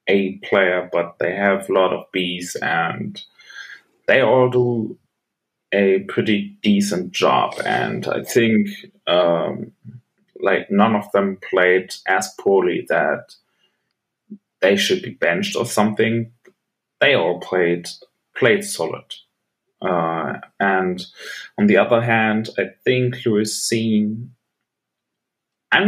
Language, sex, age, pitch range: English, male, 30-49, 100-130 Hz